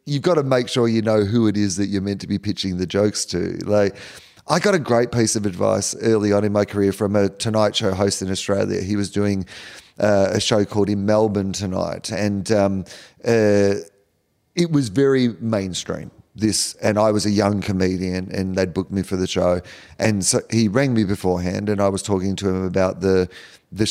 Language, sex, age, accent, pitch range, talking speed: English, male, 30-49, Australian, 95-120 Hz, 215 wpm